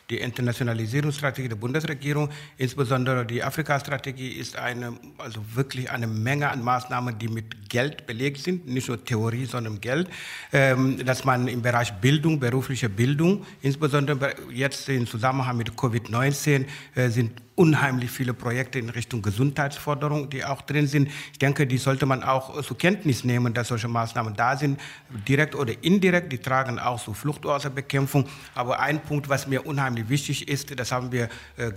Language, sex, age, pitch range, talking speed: German, male, 60-79, 125-150 Hz, 160 wpm